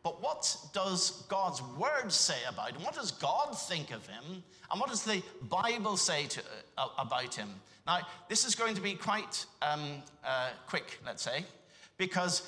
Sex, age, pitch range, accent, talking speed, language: male, 60-79, 150-210 Hz, British, 175 wpm, English